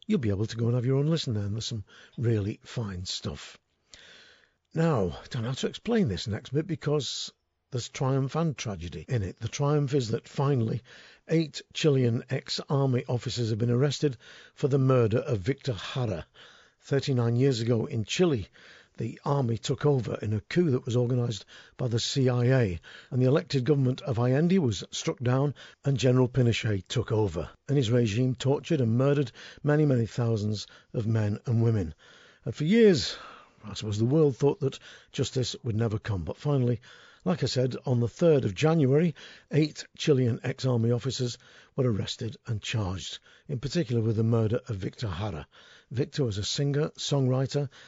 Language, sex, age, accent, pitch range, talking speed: English, male, 50-69, British, 115-145 Hz, 175 wpm